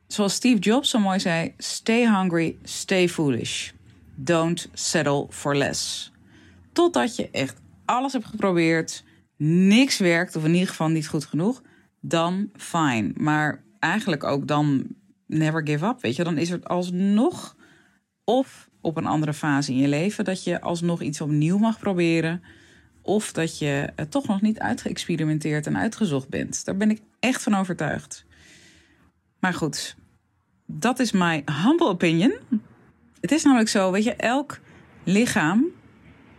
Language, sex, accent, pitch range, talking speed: Dutch, female, Dutch, 155-210 Hz, 150 wpm